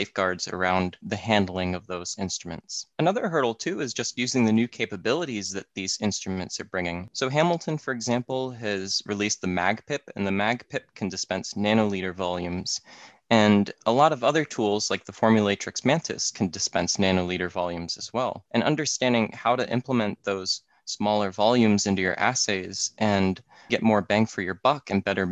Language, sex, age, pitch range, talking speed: English, male, 20-39, 95-125 Hz, 170 wpm